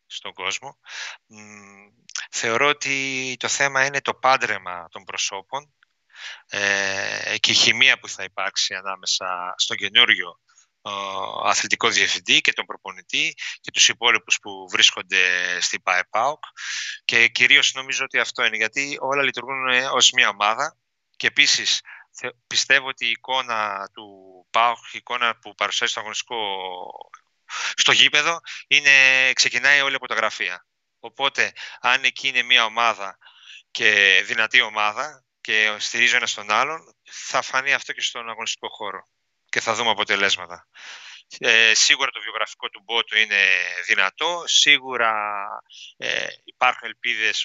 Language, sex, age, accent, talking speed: Greek, male, 30-49, Spanish, 130 wpm